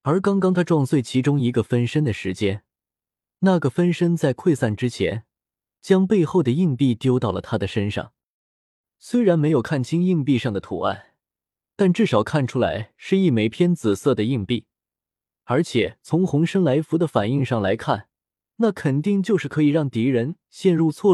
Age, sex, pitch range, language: 20-39, male, 115-170 Hz, Chinese